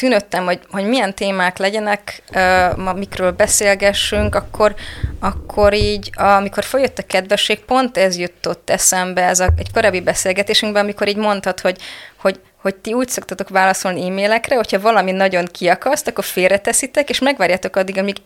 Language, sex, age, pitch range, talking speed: Hungarian, female, 20-39, 180-205 Hz, 150 wpm